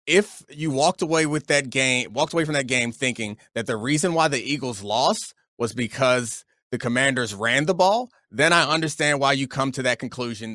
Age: 30-49